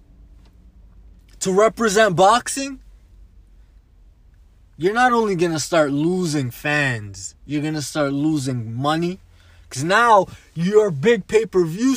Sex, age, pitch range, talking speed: male, 20-39, 115-180 Hz, 110 wpm